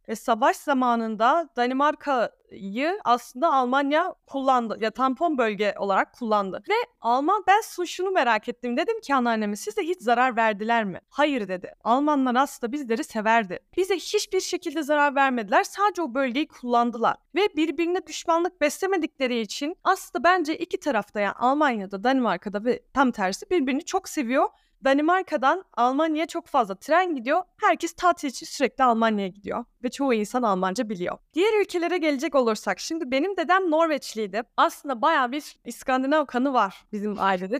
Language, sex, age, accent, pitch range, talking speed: Turkish, female, 30-49, native, 230-335 Hz, 150 wpm